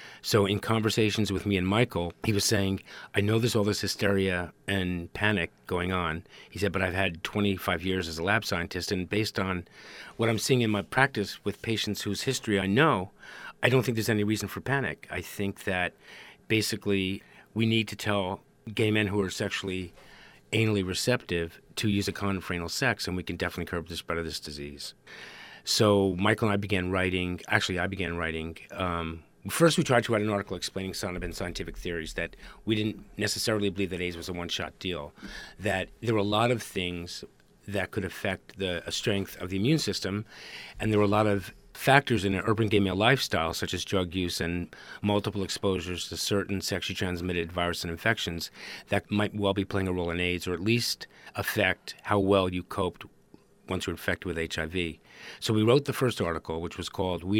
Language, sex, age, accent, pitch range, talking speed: English, male, 40-59, American, 90-105 Hz, 205 wpm